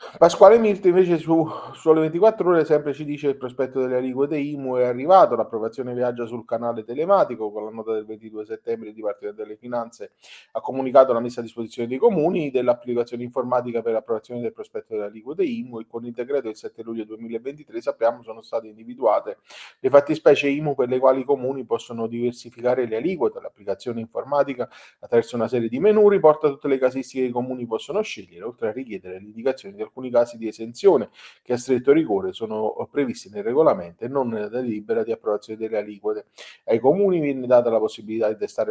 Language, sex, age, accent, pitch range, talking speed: Italian, male, 30-49, native, 115-170 Hz, 190 wpm